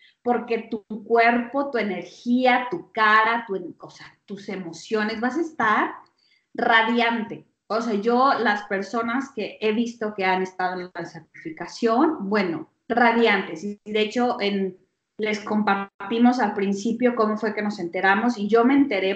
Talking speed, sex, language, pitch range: 155 wpm, female, Spanish, 195-240 Hz